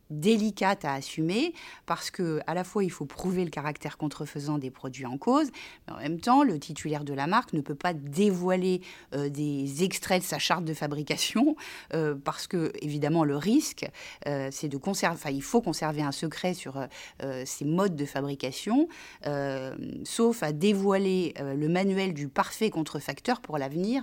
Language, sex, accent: French, female, French